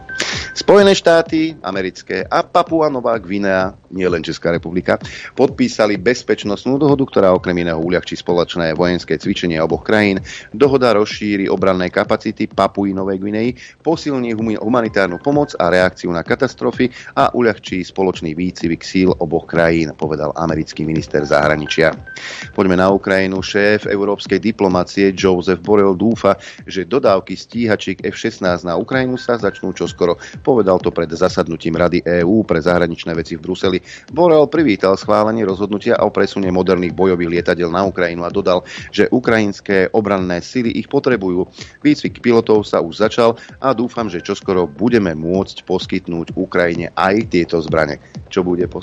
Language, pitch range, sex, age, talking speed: Slovak, 90-115 Hz, male, 30-49, 140 wpm